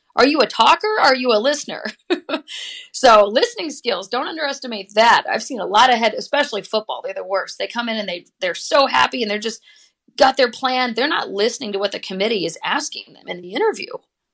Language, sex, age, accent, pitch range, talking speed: English, female, 30-49, American, 190-250 Hz, 220 wpm